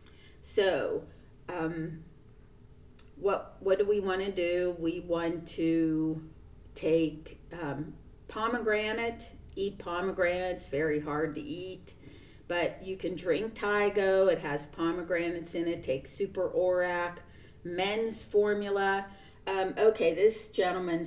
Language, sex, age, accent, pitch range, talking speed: English, female, 50-69, American, 160-190 Hz, 115 wpm